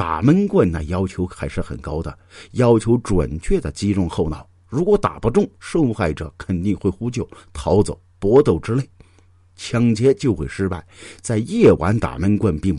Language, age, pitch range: Chinese, 50-69, 85-110 Hz